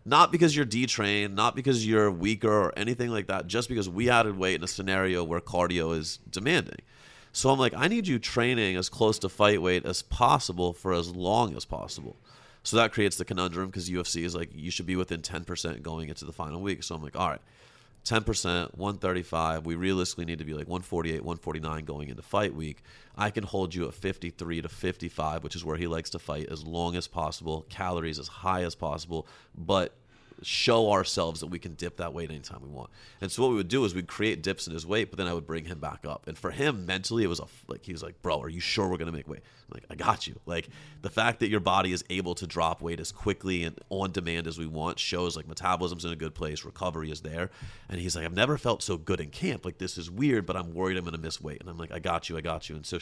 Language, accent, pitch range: English, American, 80-100 Hz